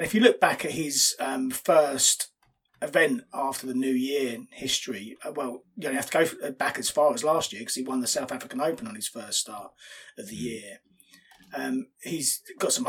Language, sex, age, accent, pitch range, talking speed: English, male, 30-49, British, 125-185 Hz, 215 wpm